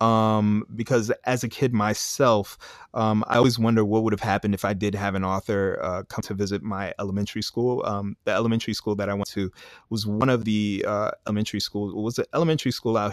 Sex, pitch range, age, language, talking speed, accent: male, 100-110 Hz, 30-49, English, 220 wpm, American